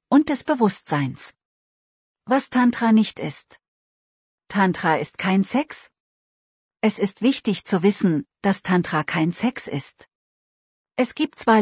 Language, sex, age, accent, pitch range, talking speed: German, female, 40-59, German, 160-225 Hz, 125 wpm